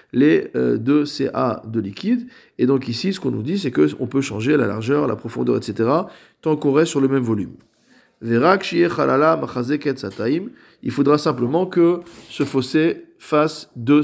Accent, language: French, French